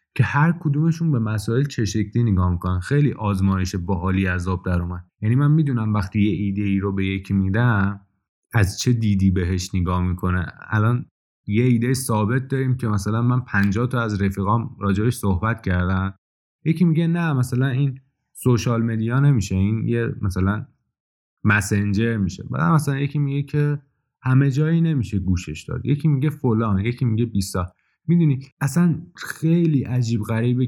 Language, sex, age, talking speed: Persian, male, 20-39, 160 wpm